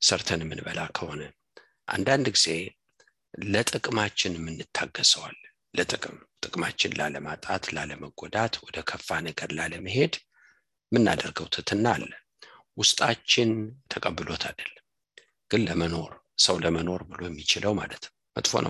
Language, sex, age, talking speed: English, male, 60-79, 100 wpm